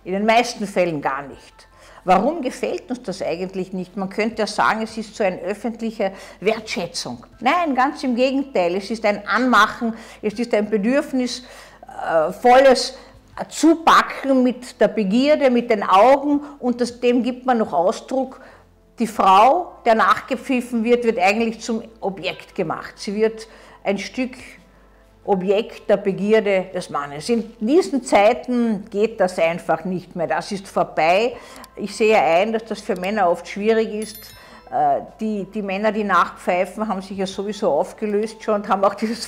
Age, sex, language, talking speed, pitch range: 50-69, female, German, 160 wpm, 195-245 Hz